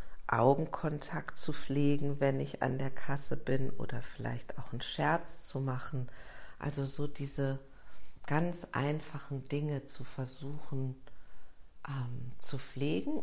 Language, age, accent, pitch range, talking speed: German, 50-69, German, 120-140 Hz, 120 wpm